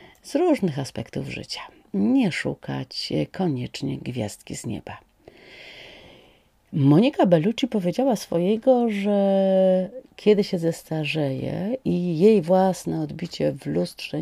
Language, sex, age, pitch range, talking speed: Polish, female, 40-59, 140-190 Hz, 100 wpm